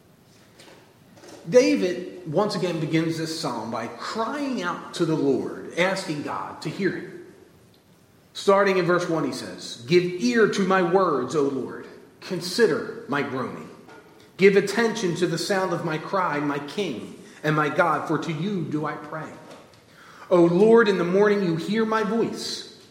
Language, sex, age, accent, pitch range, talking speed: English, male, 40-59, American, 155-200 Hz, 160 wpm